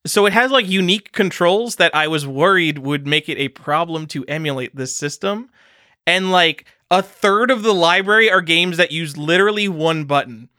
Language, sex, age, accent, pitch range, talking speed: English, male, 20-39, American, 150-235 Hz, 185 wpm